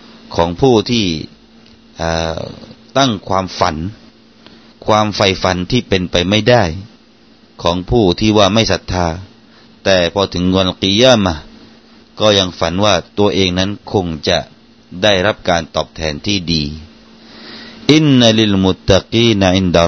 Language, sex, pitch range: Thai, male, 90-115 Hz